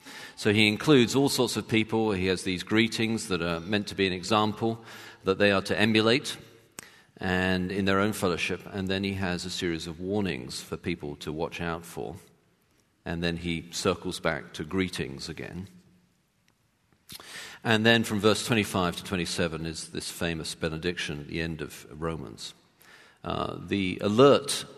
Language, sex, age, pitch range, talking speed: English, male, 40-59, 85-105 Hz, 165 wpm